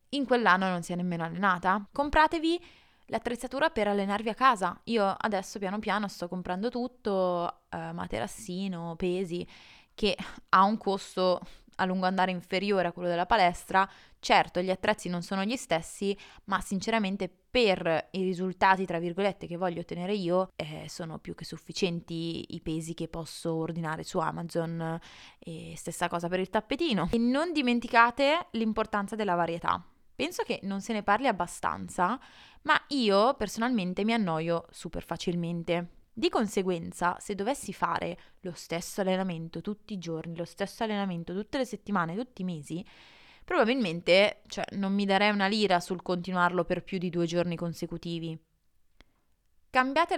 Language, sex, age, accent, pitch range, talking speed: Italian, female, 20-39, native, 170-220 Hz, 150 wpm